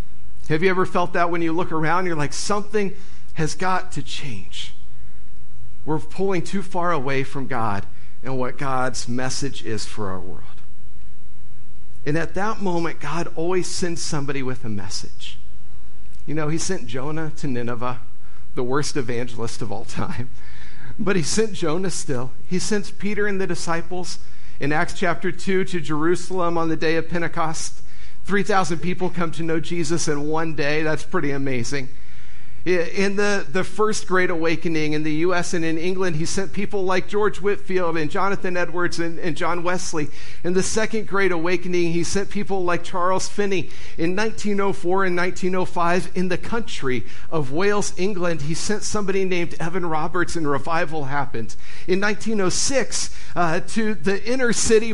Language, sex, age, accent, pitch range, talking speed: English, male, 50-69, American, 150-195 Hz, 165 wpm